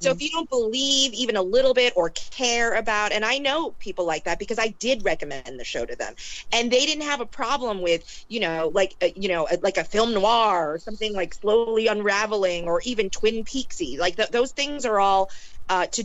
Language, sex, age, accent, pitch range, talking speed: English, female, 30-49, American, 195-260 Hz, 220 wpm